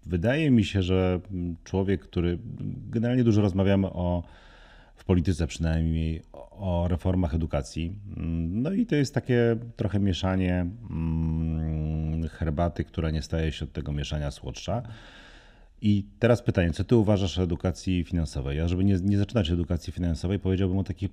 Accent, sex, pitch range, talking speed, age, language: native, male, 80-95 Hz, 145 wpm, 40-59, Polish